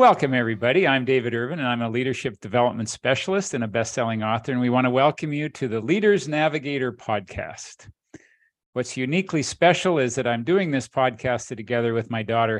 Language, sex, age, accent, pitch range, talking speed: English, male, 50-69, American, 115-145 Hz, 185 wpm